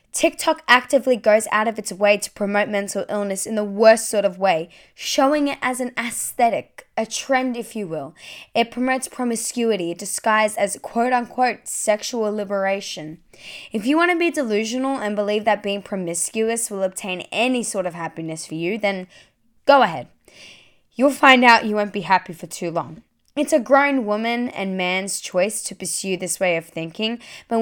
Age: 10-29